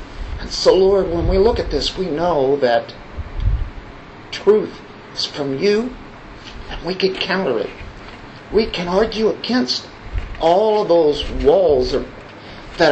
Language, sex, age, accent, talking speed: English, male, 50-69, American, 130 wpm